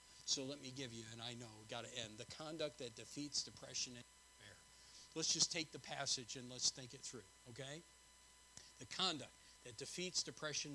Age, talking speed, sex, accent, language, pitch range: 50-69, 190 wpm, male, American, English, 110-155 Hz